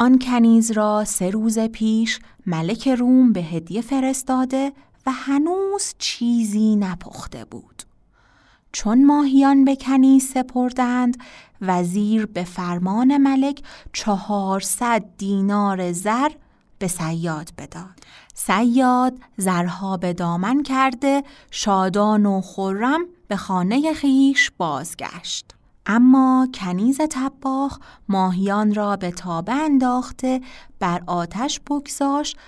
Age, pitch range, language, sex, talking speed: 30-49, 195-270 Hz, Persian, female, 100 wpm